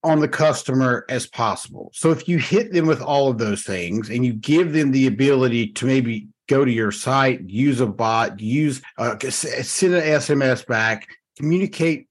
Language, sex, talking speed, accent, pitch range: English, male, 185 wpm, American, 125-170 Hz